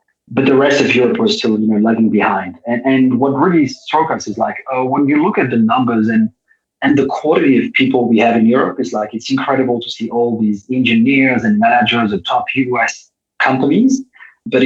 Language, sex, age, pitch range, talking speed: English, male, 30-49, 115-140 Hz, 215 wpm